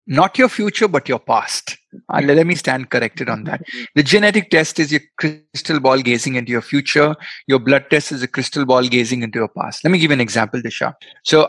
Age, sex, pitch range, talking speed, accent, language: 30-49, male, 130-155 Hz, 225 wpm, native, Hindi